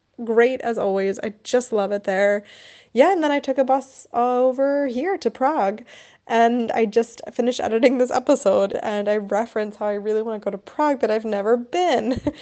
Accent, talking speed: American, 200 wpm